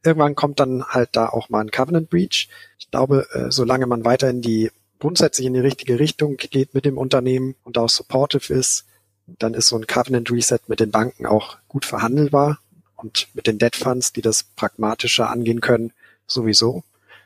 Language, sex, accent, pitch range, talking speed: German, male, German, 115-135 Hz, 170 wpm